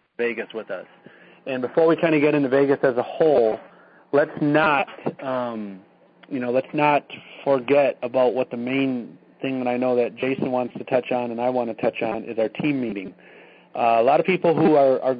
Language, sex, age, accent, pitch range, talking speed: English, male, 40-59, American, 120-140 Hz, 215 wpm